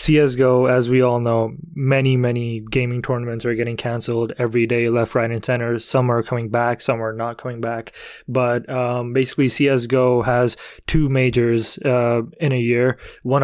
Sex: male